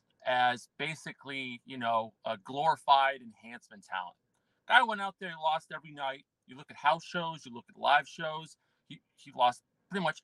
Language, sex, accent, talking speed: English, male, American, 180 wpm